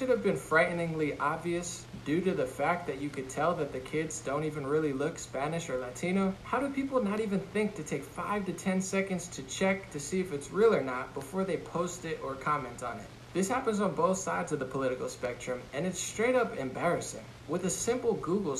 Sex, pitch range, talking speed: male, 145-190 Hz, 220 wpm